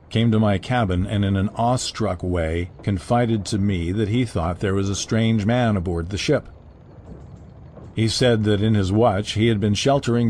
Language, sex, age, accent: English, male, 50-69, American